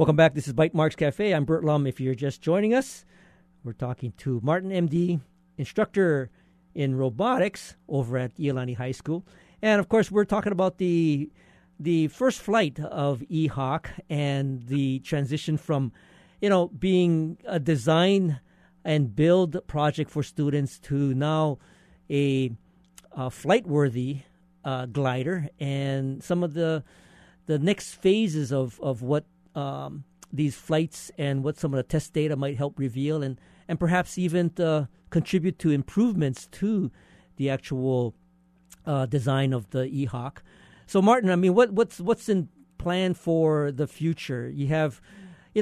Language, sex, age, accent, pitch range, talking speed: English, male, 50-69, American, 140-180 Hz, 155 wpm